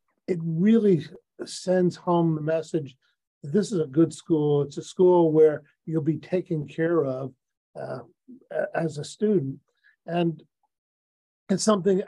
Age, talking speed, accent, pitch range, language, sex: 50-69, 135 wpm, American, 150-170 Hz, English, male